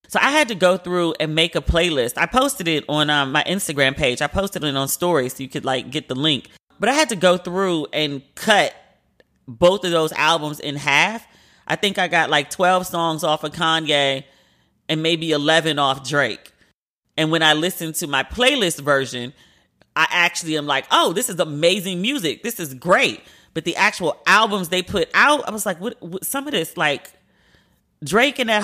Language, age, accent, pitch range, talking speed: English, 30-49, American, 155-210 Hz, 205 wpm